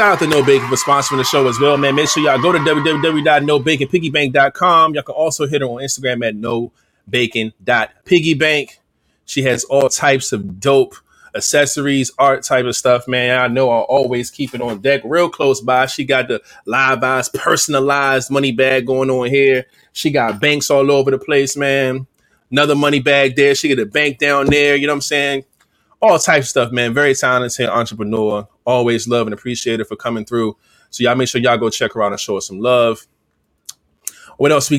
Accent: American